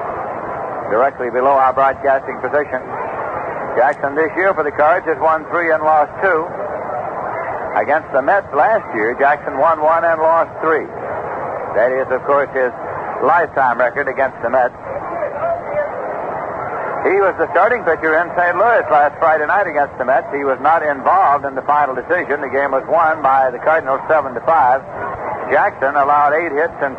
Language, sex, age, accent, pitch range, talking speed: English, male, 60-79, American, 140-170 Hz, 165 wpm